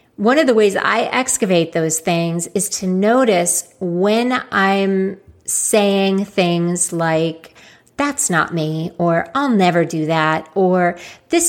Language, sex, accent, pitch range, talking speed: English, female, American, 175-210 Hz, 135 wpm